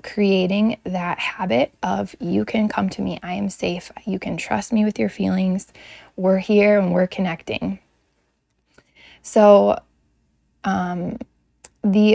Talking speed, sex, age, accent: 135 wpm, female, 10-29, American